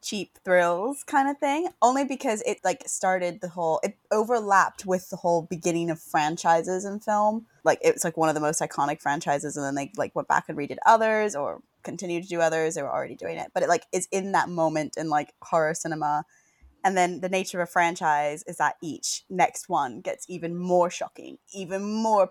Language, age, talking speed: English, 20-39, 210 wpm